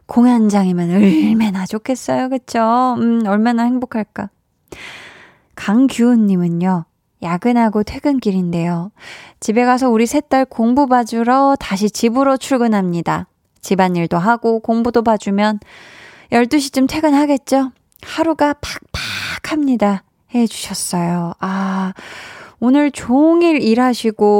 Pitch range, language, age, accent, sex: 195-260 Hz, Korean, 20-39, native, female